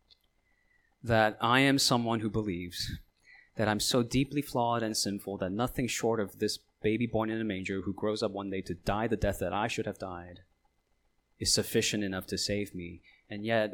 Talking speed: 195 wpm